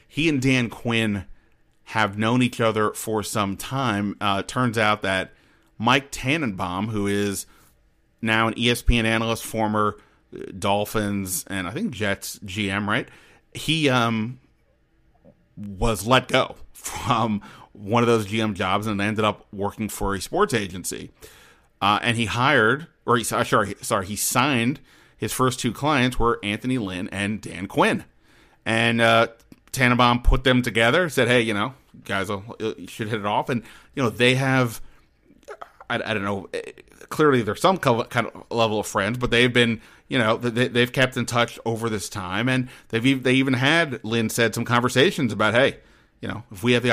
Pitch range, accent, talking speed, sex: 105-125 Hz, American, 170 wpm, male